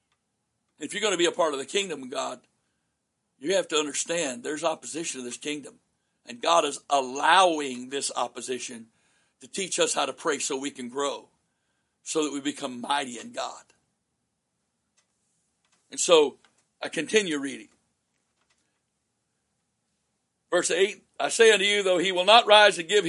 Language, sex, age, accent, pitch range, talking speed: English, male, 60-79, American, 155-225 Hz, 160 wpm